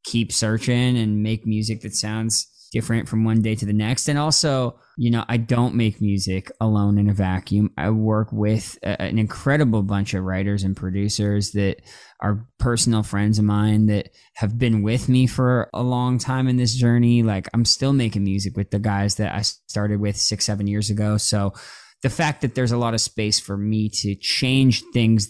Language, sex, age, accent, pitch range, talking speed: English, male, 20-39, American, 105-125 Hz, 200 wpm